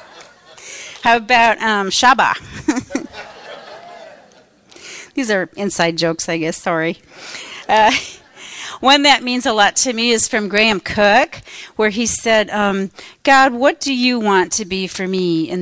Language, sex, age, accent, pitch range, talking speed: English, female, 40-59, American, 175-240 Hz, 140 wpm